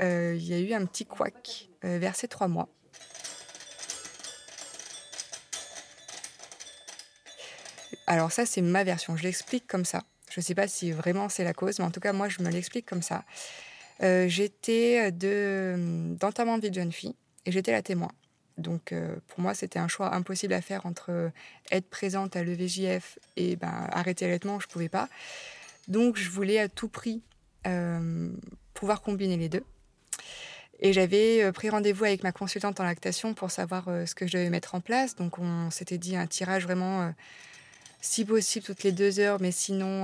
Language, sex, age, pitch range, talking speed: French, female, 20-39, 175-200 Hz, 185 wpm